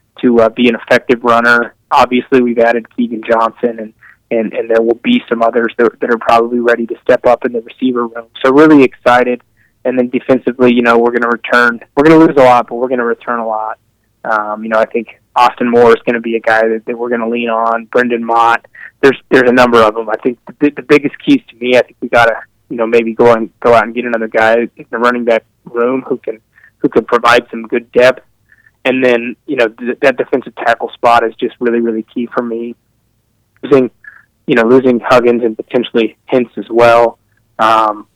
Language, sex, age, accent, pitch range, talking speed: English, male, 20-39, American, 115-125 Hz, 235 wpm